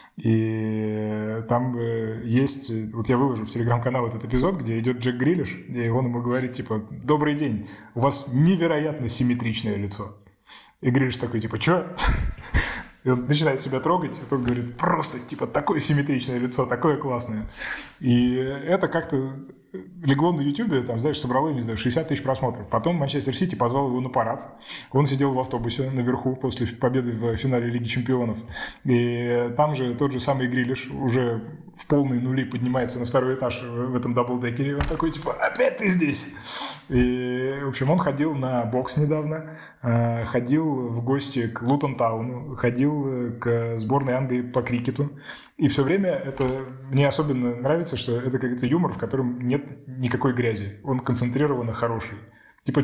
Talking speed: 160 wpm